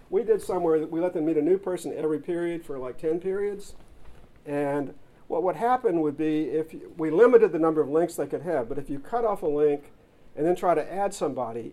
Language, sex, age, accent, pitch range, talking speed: English, male, 50-69, American, 130-175 Hz, 240 wpm